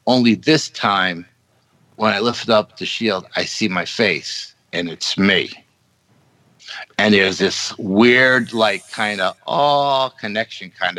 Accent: American